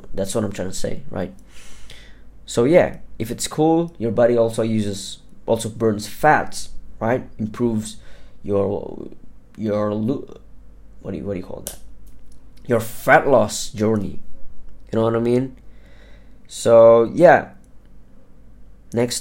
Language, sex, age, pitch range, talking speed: English, male, 20-39, 100-115 Hz, 135 wpm